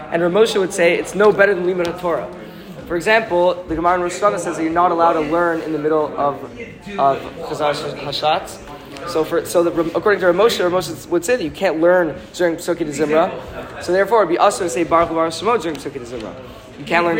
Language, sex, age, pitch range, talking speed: English, male, 20-39, 160-185 Hz, 225 wpm